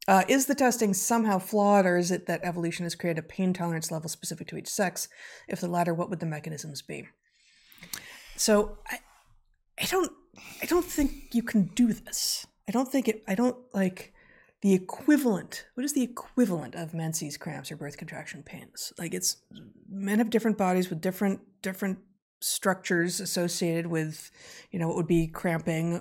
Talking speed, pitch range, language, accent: 180 wpm, 160-210 Hz, English, American